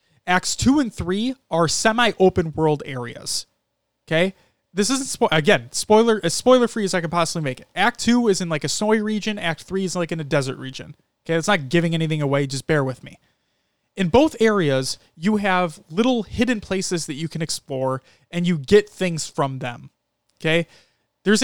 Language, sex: English, male